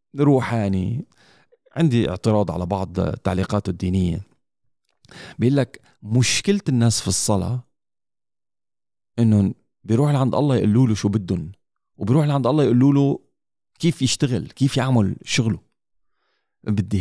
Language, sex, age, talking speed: Arabic, male, 40-59, 110 wpm